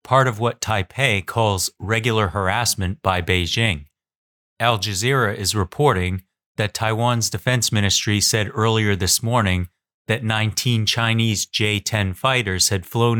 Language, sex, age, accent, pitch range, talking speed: English, male, 30-49, American, 95-115 Hz, 125 wpm